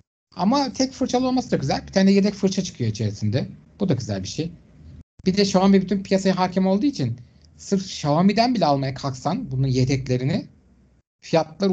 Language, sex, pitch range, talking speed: Turkish, male, 130-195 Hz, 170 wpm